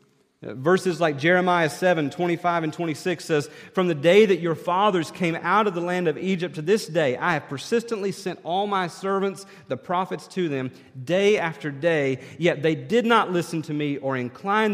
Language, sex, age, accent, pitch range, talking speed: English, male, 40-59, American, 140-195 Hz, 195 wpm